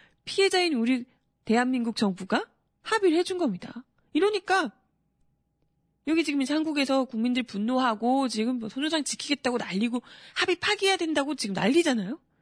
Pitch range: 200-290 Hz